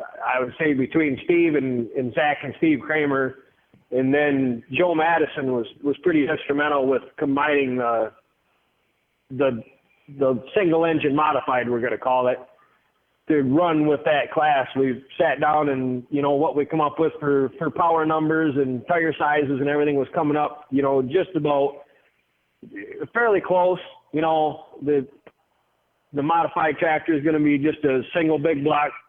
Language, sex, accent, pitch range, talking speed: English, male, American, 125-155 Hz, 165 wpm